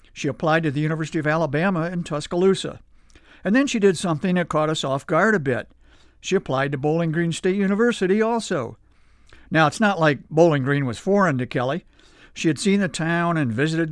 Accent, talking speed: American, 200 wpm